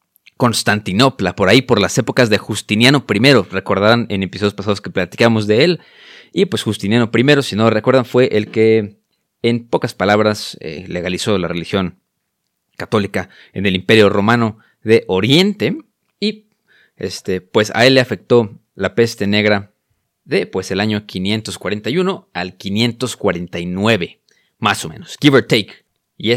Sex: male